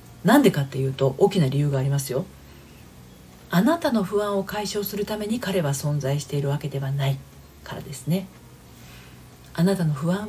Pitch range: 140-205 Hz